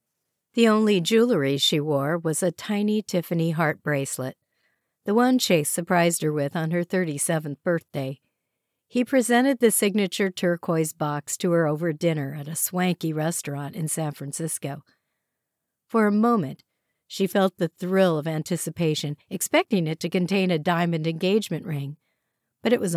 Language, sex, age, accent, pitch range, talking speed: English, female, 50-69, American, 155-205 Hz, 150 wpm